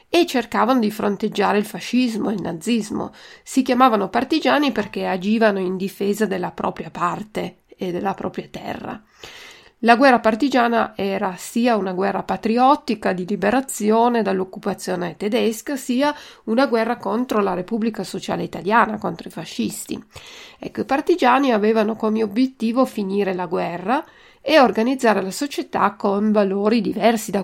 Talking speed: 140 wpm